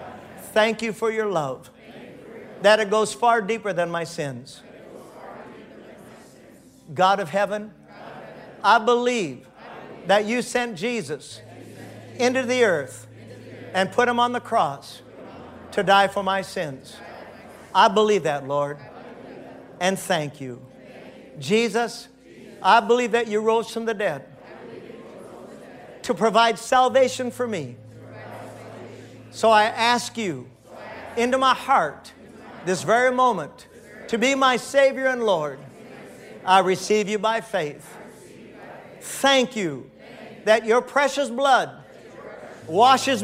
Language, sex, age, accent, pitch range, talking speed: English, male, 50-69, American, 170-245 Hz, 120 wpm